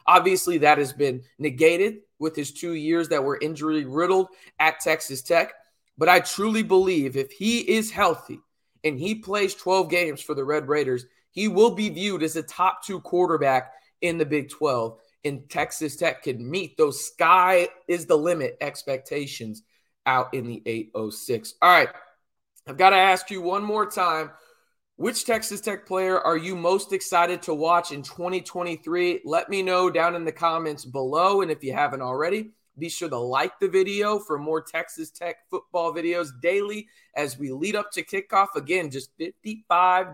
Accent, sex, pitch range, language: American, male, 150-195 Hz, English